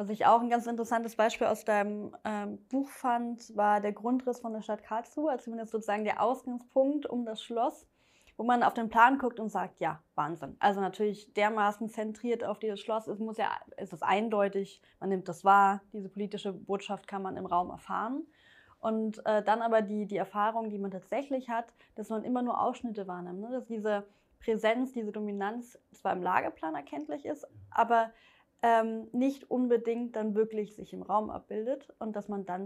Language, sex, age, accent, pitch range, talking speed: German, female, 20-39, German, 205-240 Hz, 190 wpm